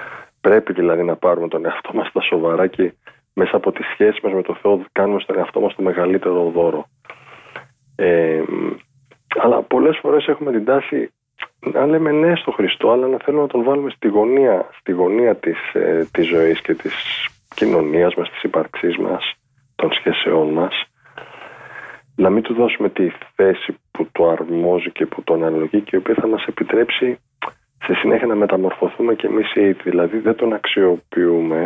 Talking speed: 170 wpm